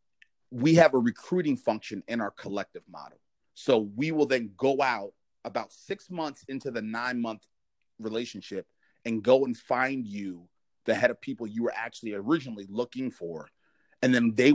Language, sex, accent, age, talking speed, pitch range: English, male, American, 30-49, 170 wpm, 105-135 Hz